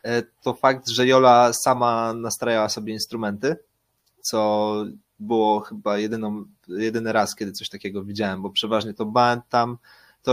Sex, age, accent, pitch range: male, 20-39, native, 110-125 Hz